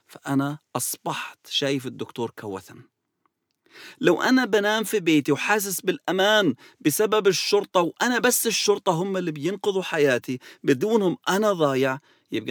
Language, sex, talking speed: English, male, 120 wpm